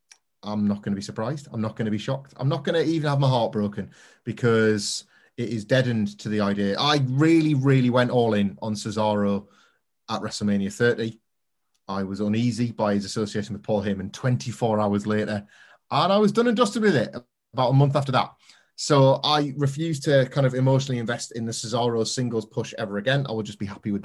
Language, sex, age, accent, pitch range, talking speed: English, male, 30-49, British, 105-135 Hz, 210 wpm